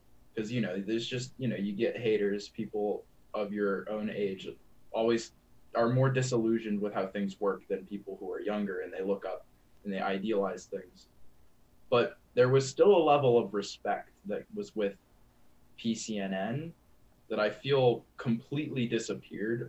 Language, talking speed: English, 160 wpm